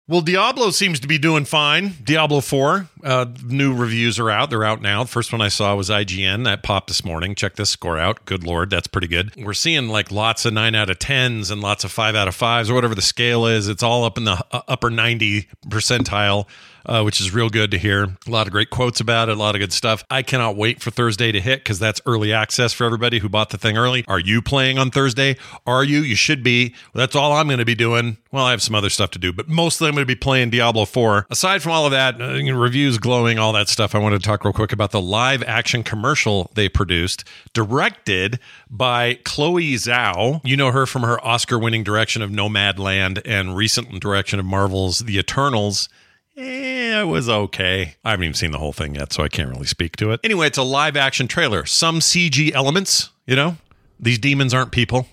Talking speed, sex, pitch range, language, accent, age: 235 wpm, male, 105-130 Hz, English, American, 40-59